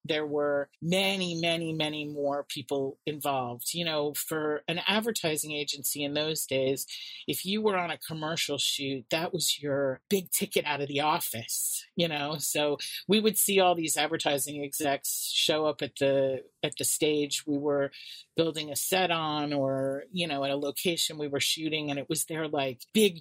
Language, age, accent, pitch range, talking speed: English, 40-59, American, 145-175 Hz, 185 wpm